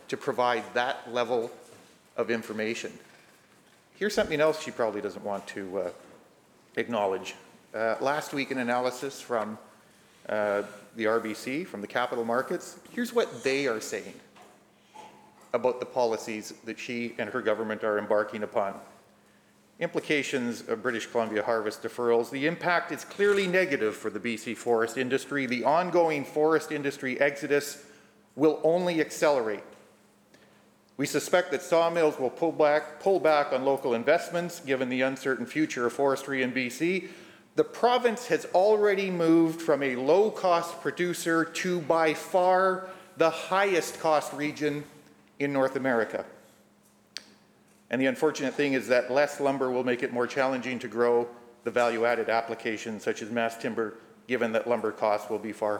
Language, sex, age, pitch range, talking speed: English, male, 40-59, 115-160 Hz, 145 wpm